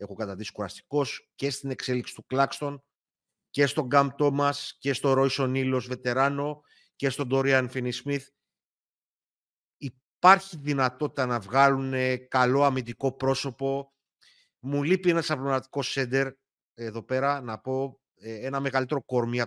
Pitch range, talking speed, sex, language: 125-145 Hz, 125 wpm, male, Greek